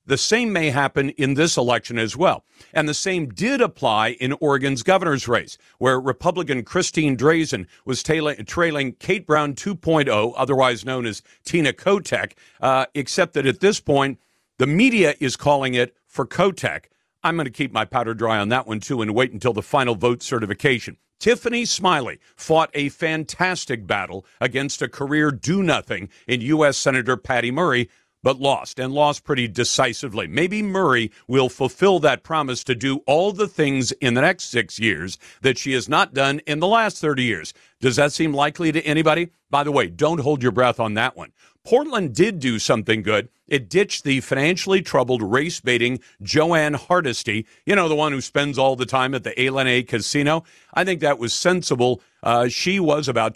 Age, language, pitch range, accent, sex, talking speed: 50-69, English, 125-160 Hz, American, male, 180 wpm